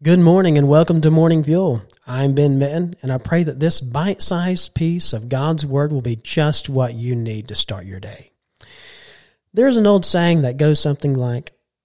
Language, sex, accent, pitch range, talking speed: English, male, American, 125-170 Hz, 190 wpm